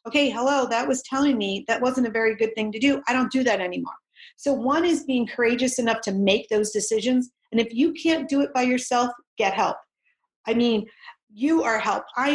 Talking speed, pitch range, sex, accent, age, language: 220 wpm, 215-265 Hz, female, American, 40-59, English